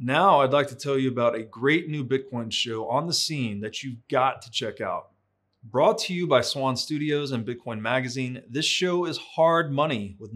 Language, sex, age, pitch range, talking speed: English, male, 30-49, 115-150 Hz, 210 wpm